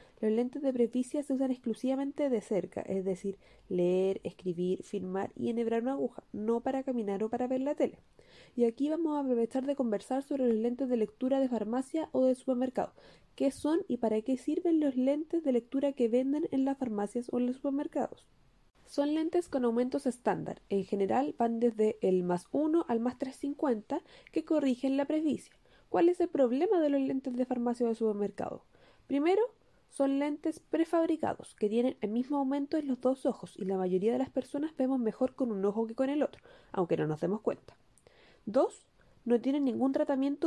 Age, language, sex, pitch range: 20-39, Spanish, female, 235-295 Hz